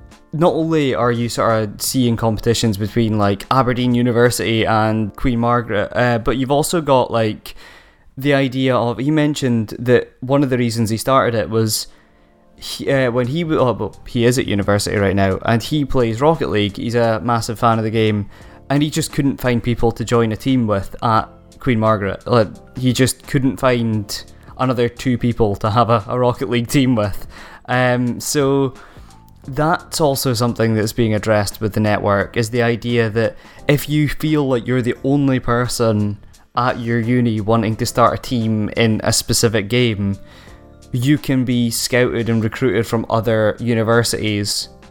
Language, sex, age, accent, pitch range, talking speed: English, male, 10-29, British, 110-125 Hz, 175 wpm